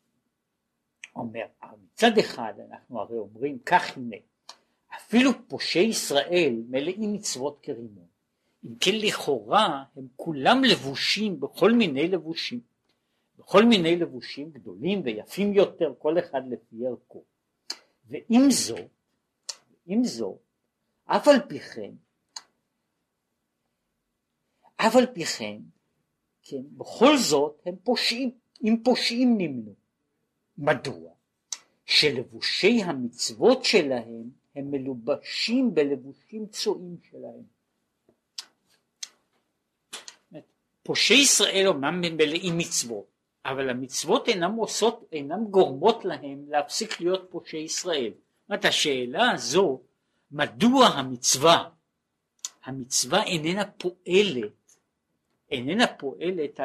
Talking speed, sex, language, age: 95 wpm, male, Hebrew, 60-79